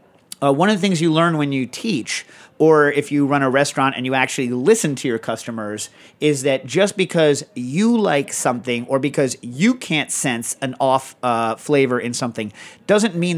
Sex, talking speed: male, 195 wpm